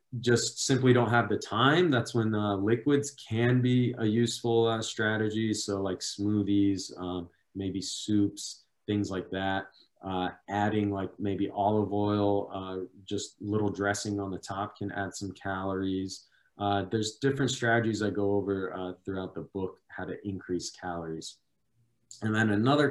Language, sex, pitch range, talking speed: English, male, 95-115 Hz, 155 wpm